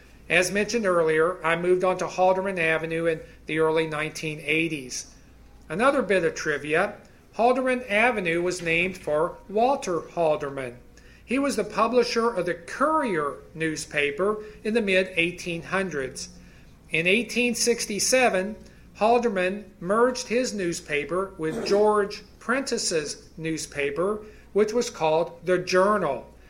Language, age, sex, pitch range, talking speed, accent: English, 40-59, male, 160-205 Hz, 115 wpm, American